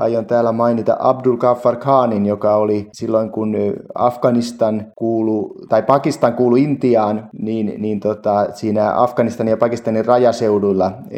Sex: male